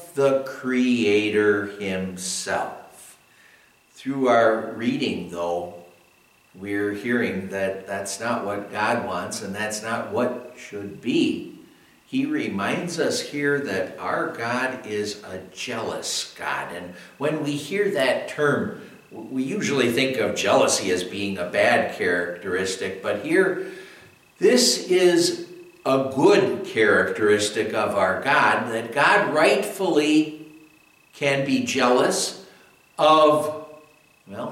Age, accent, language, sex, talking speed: 60-79, American, English, male, 115 wpm